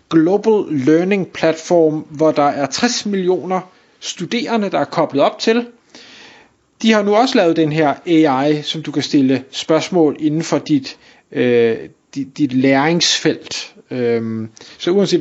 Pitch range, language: 135-165 Hz, Danish